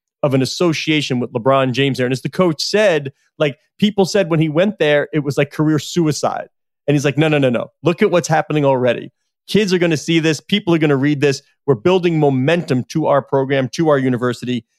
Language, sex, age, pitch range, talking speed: English, male, 30-49, 140-185 Hz, 230 wpm